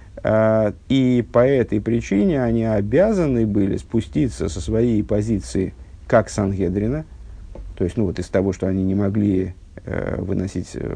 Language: Russian